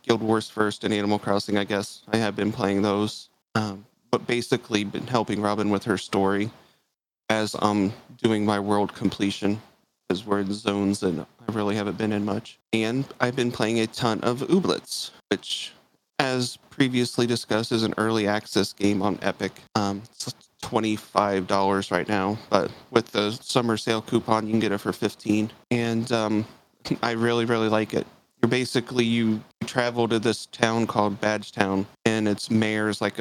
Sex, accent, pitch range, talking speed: male, American, 105-115 Hz, 175 wpm